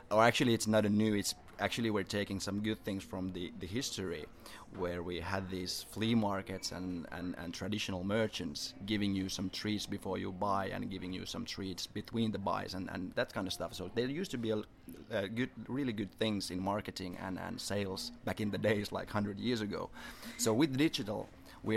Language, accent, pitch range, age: English, Finnish, 95-110 Hz, 30-49